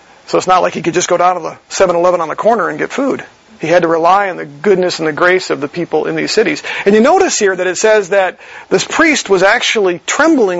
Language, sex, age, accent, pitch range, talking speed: English, male, 40-59, American, 185-230 Hz, 265 wpm